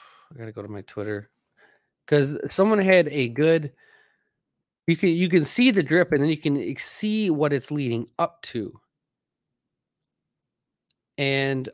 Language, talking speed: English, 155 wpm